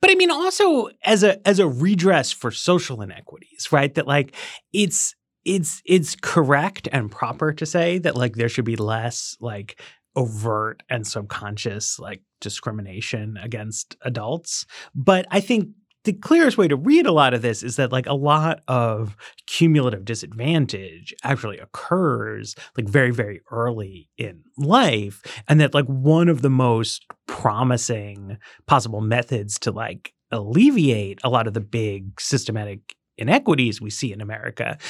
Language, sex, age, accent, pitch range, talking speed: English, male, 30-49, American, 110-165 Hz, 155 wpm